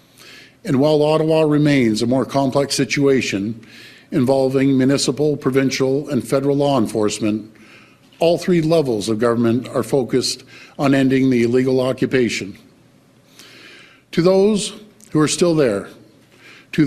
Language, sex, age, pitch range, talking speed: English, male, 50-69, 125-155 Hz, 120 wpm